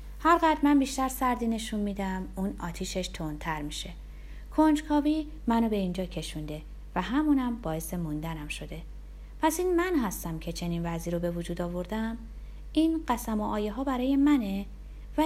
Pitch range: 175-245 Hz